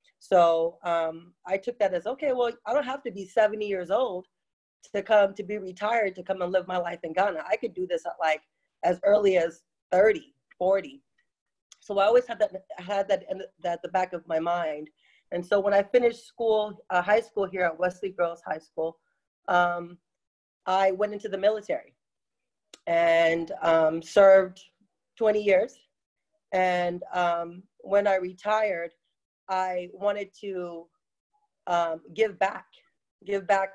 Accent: American